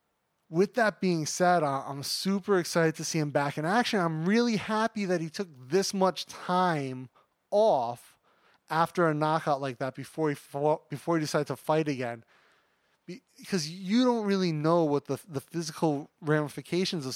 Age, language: 20-39, English